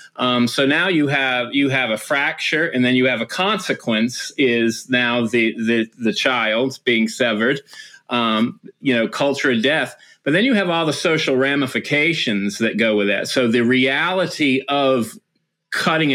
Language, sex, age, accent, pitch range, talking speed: English, male, 30-49, American, 120-145 Hz, 170 wpm